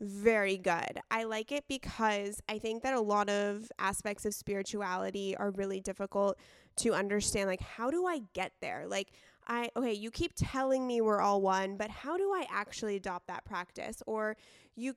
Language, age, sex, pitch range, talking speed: English, 20-39, female, 195-225 Hz, 185 wpm